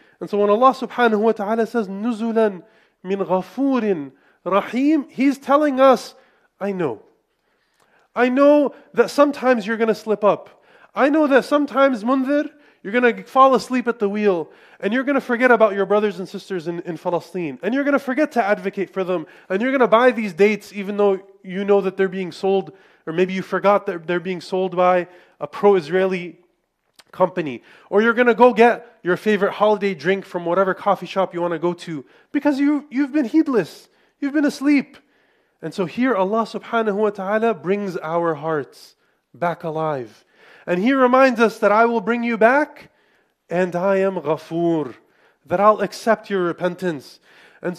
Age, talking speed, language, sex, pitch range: 30-49, 185 wpm, English, male, 185-240 Hz